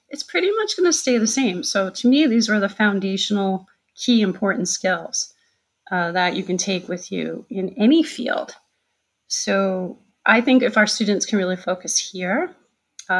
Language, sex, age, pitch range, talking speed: English, female, 30-49, 185-225 Hz, 175 wpm